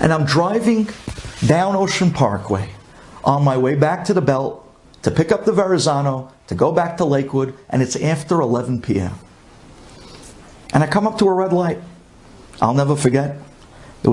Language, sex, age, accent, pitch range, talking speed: English, male, 50-69, American, 130-200 Hz, 170 wpm